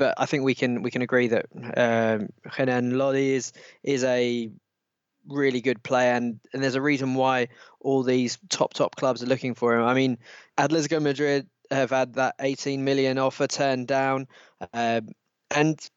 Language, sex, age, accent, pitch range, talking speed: English, male, 20-39, British, 120-140 Hz, 175 wpm